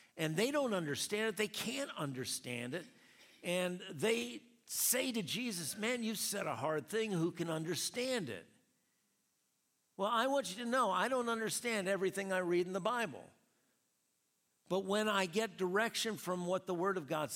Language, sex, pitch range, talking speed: English, male, 130-195 Hz, 175 wpm